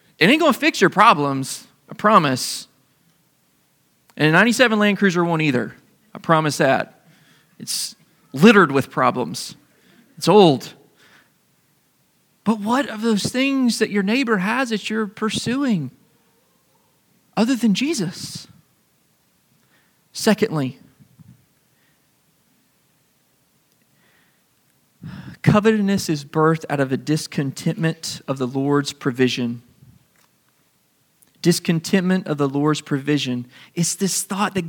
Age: 30-49